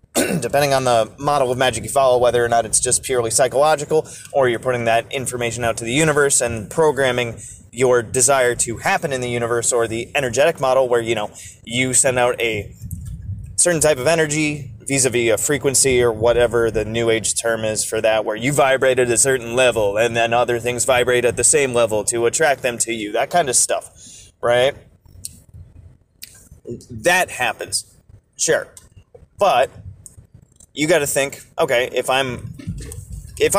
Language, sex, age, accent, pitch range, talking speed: English, male, 20-39, American, 115-140 Hz, 175 wpm